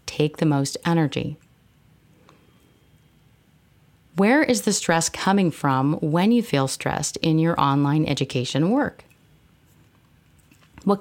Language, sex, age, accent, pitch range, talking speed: English, female, 40-59, American, 145-205 Hz, 110 wpm